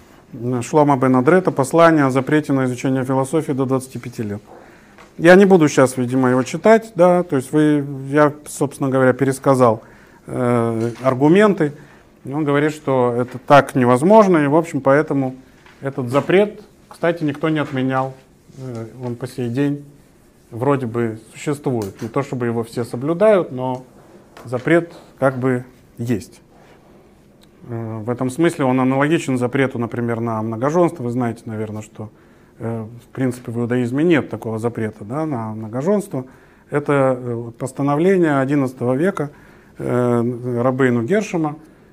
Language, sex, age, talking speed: Russian, male, 30-49, 130 wpm